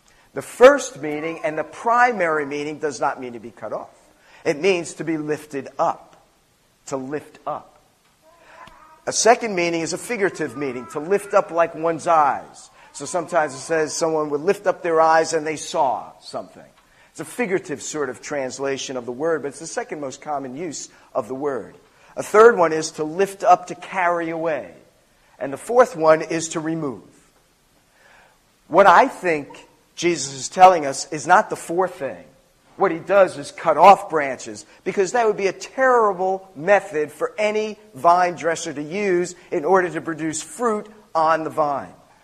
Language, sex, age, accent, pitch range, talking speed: English, male, 50-69, American, 150-195 Hz, 180 wpm